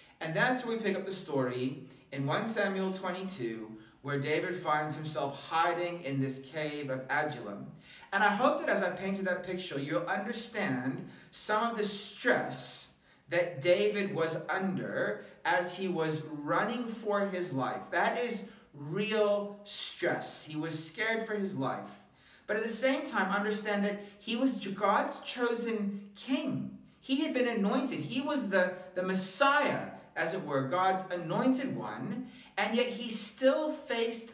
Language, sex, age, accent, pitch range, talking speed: English, male, 30-49, American, 150-225 Hz, 155 wpm